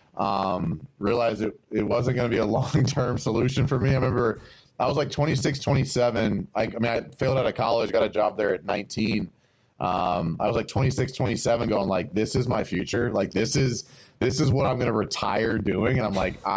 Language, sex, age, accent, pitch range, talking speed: English, male, 30-49, American, 110-135 Hz, 215 wpm